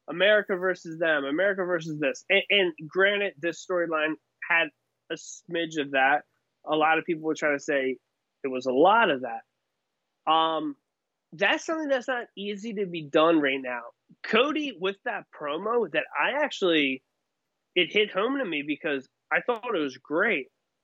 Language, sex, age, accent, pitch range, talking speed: English, male, 20-39, American, 150-200 Hz, 170 wpm